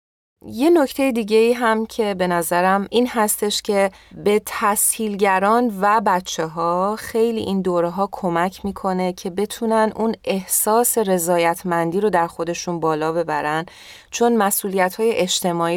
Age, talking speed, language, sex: 30-49, 135 wpm, Persian, female